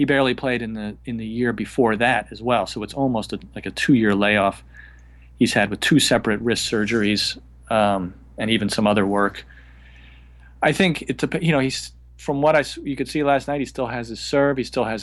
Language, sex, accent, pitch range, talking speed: English, male, American, 95-125 Hz, 215 wpm